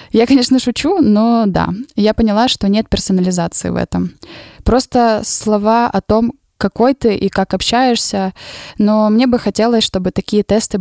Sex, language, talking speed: female, Ukrainian, 155 wpm